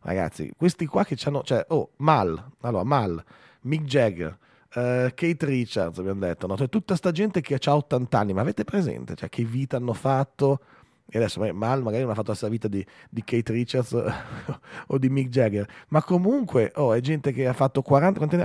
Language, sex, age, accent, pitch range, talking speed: Italian, male, 30-49, native, 110-150 Hz, 205 wpm